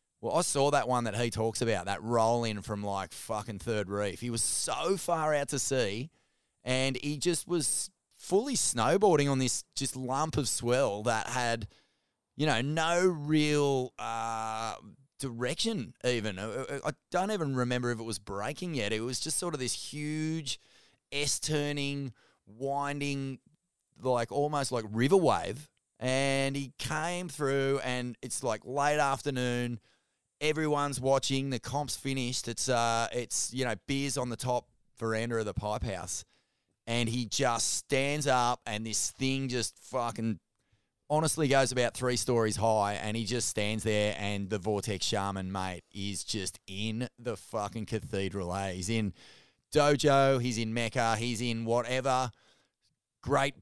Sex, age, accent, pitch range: male, 20-39, Australian, 110-140 Hz